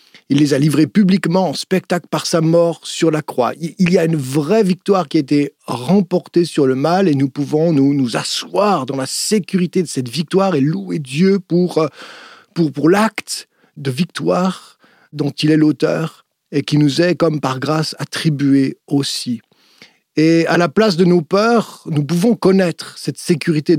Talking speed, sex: 180 wpm, male